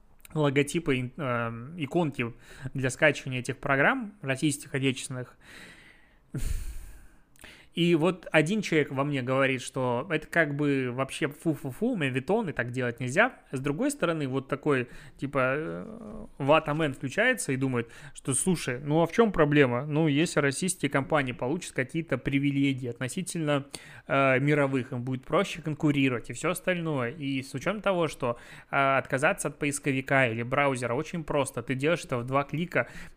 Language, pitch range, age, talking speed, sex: Russian, 135-165 Hz, 20-39, 145 wpm, male